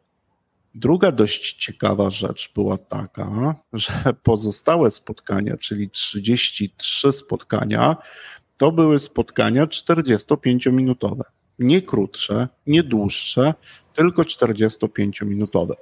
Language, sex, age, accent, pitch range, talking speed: Polish, male, 50-69, native, 105-135 Hz, 85 wpm